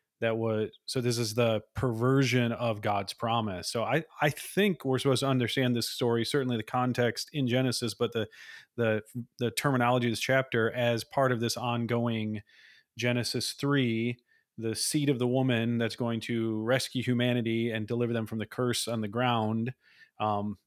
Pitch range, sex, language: 115-130 Hz, male, English